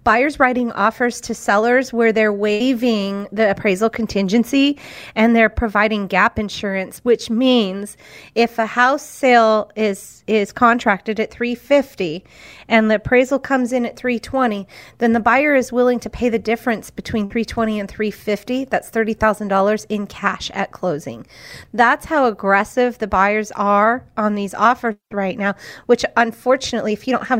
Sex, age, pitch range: female, 30-49, 200-240 Hz